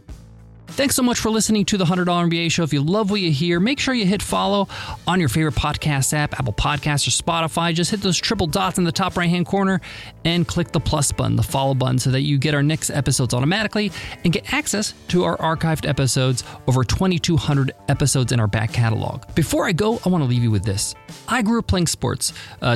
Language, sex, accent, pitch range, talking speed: English, male, American, 130-185 Hz, 225 wpm